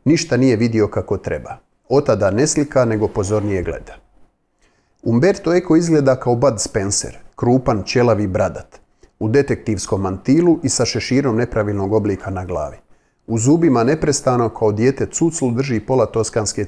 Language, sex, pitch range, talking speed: Croatian, male, 105-135 Hz, 140 wpm